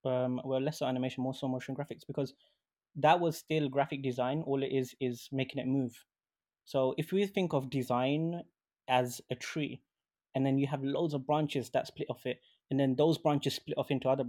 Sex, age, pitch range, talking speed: male, 20-39, 125-140 Hz, 205 wpm